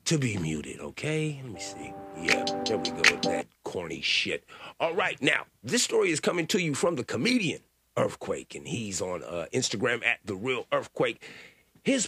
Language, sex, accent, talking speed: English, male, American, 190 wpm